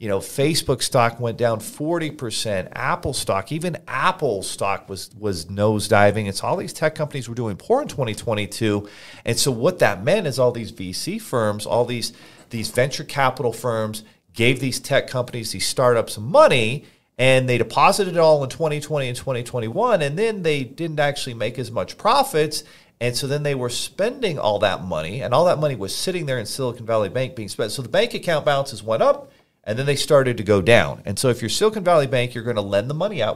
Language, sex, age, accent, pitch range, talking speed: English, male, 40-59, American, 105-150 Hz, 210 wpm